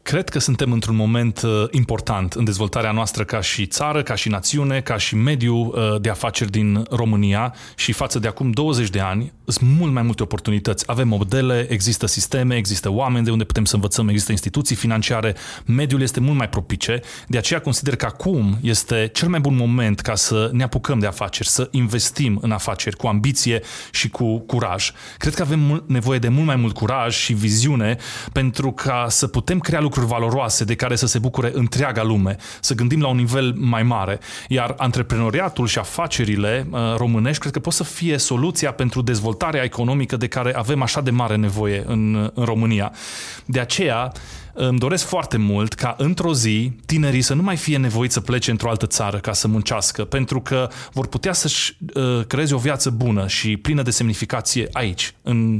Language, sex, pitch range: English, male, 110-135 Hz